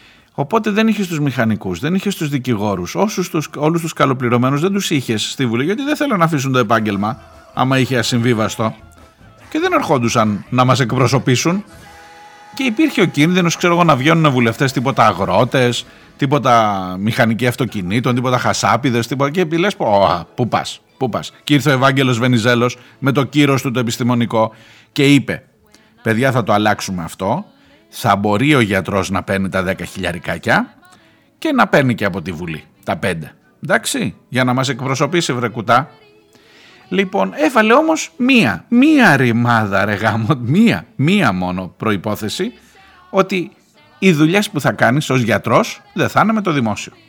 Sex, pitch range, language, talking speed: male, 110-160 Hz, Greek, 160 wpm